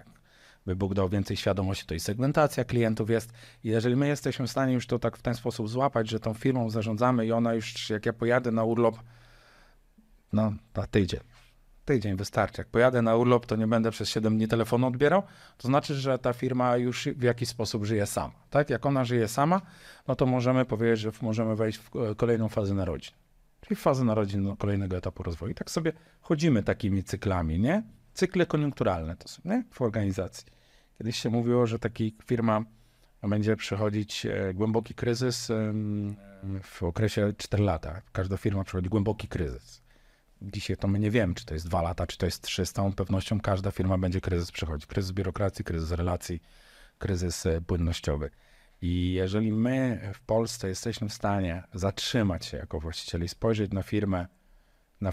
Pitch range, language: 95-120 Hz, Polish